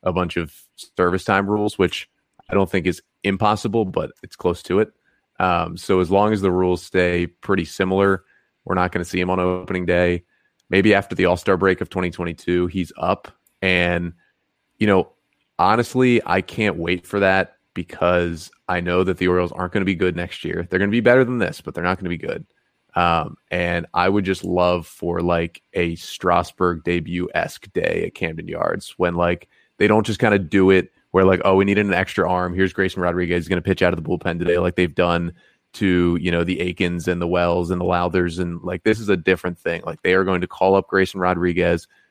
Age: 30-49